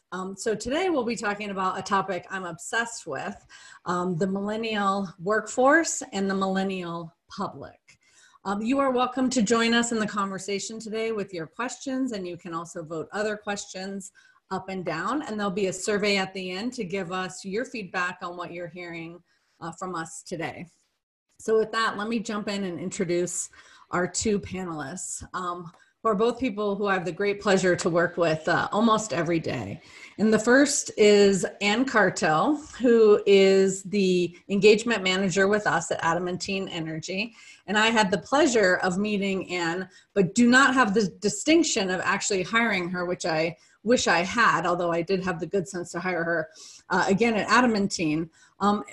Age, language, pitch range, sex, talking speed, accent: 30-49, English, 180-220 Hz, female, 180 wpm, American